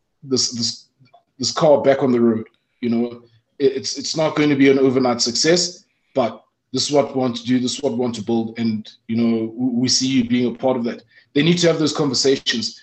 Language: English